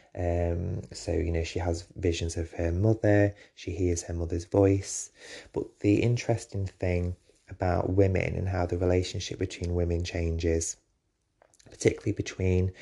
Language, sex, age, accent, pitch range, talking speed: English, male, 20-39, British, 85-95 Hz, 140 wpm